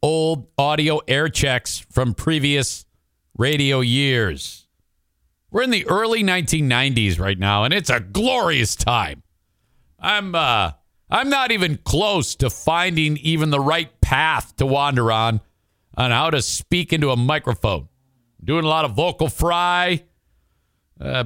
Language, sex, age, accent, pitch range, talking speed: English, male, 50-69, American, 105-150 Hz, 140 wpm